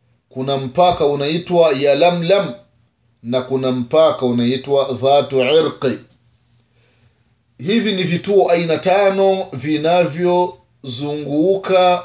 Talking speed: 80 wpm